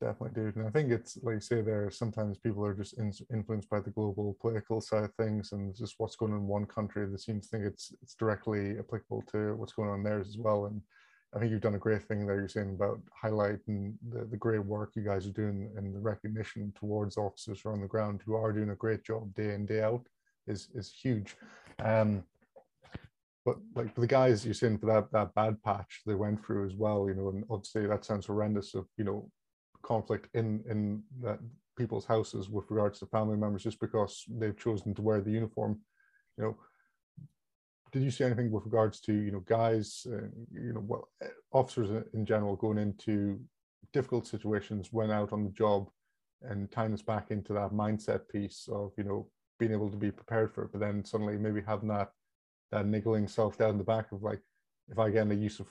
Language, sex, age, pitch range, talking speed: English, male, 20-39, 105-110 Hz, 220 wpm